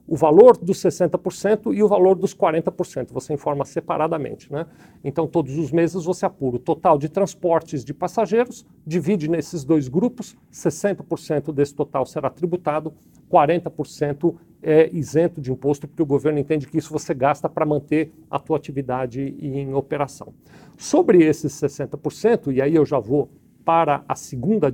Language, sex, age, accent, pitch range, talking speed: Portuguese, male, 50-69, Brazilian, 150-190 Hz, 160 wpm